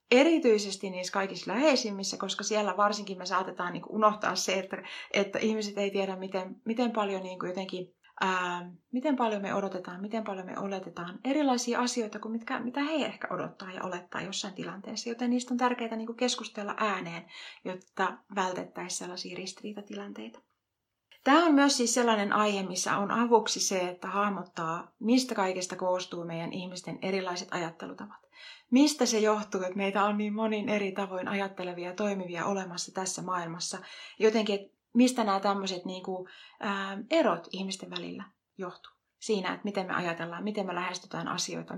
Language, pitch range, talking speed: Finnish, 185-225 Hz, 150 wpm